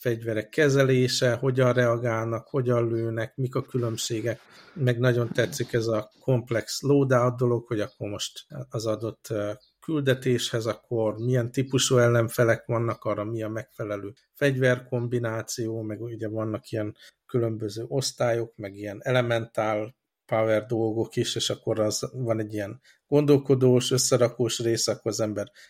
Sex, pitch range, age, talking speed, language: male, 110-130 Hz, 50-69, 130 wpm, Hungarian